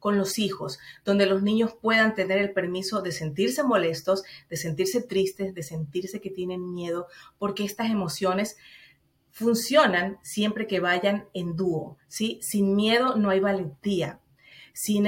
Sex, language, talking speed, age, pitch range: female, Spanish, 145 wpm, 40-59, 185-220 Hz